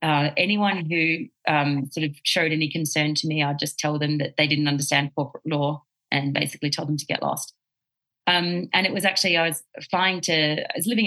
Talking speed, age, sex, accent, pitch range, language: 215 wpm, 30-49, female, Australian, 145-165 Hz, English